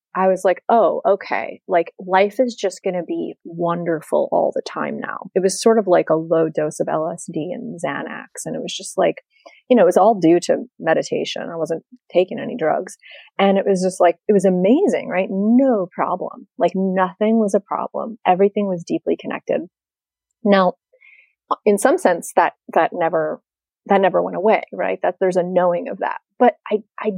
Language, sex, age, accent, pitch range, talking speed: English, female, 30-49, American, 180-220 Hz, 190 wpm